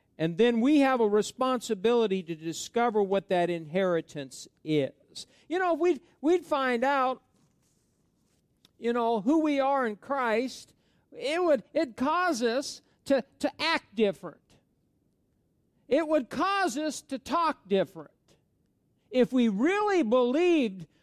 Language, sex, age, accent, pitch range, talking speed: English, male, 50-69, American, 200-300 Hz, 130 wpm